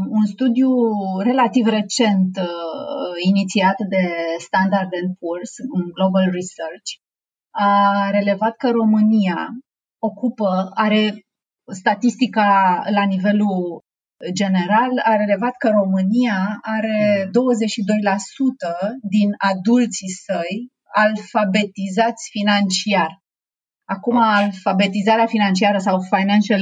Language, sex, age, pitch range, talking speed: Romanian, female, 30-49, 190-225 Hz, 85 wpm